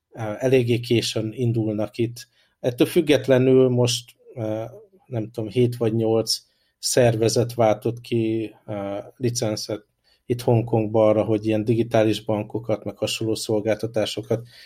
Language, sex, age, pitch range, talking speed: Hungarian, male, 50-69, 110-120 Hz, 105 wpm